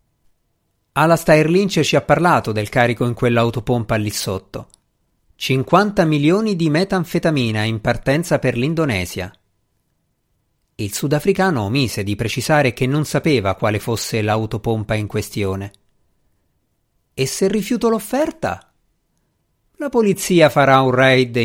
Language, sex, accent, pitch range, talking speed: Italian, male, native, 105-150 Hz, 115 wpm